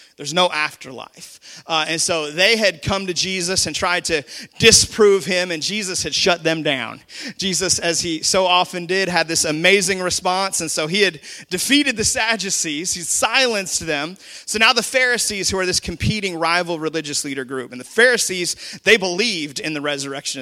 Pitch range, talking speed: 170-225 Hz, 180 wpm